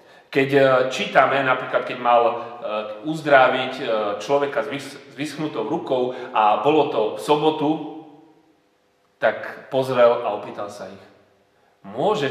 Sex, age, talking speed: male, 30-49, 105 wpm